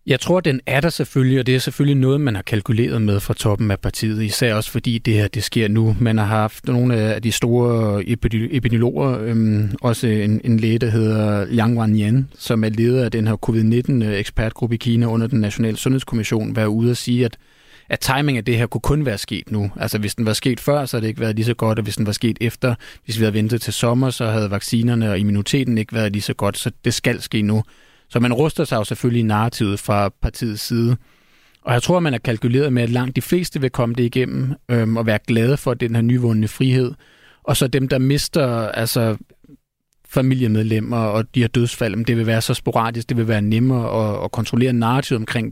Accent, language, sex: native, Danish, male